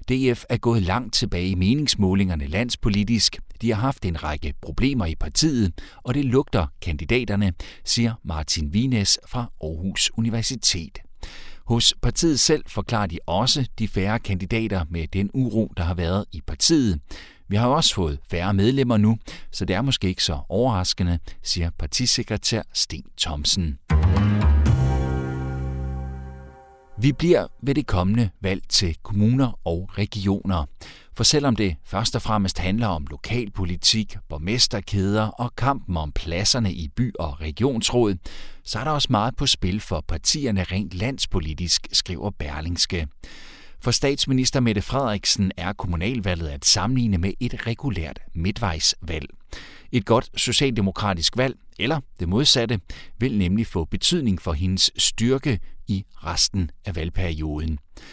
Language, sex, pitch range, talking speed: Danish, male, 85-120 Hz, 135 wpm